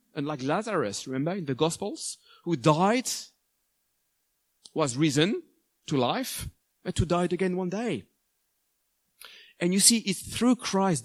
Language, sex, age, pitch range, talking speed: English, male, 40-59, 135-185 Hz, 135 wpm